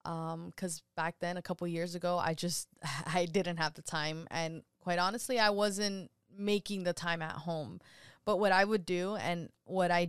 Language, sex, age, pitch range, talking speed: English, female, 20-39, 165-195 Hz, 195 wpm